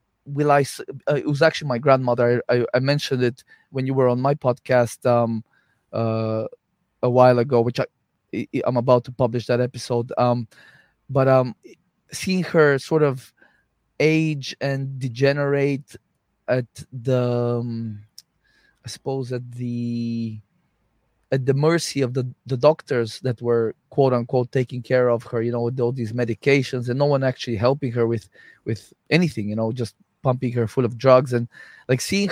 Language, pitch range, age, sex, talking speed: English, 125-145 Hz, 20-39, male, 165 wpm